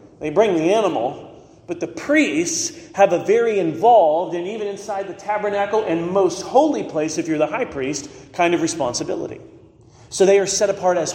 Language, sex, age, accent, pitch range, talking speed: English, male, 40-59, American, 155-230 Hz, 185 wpm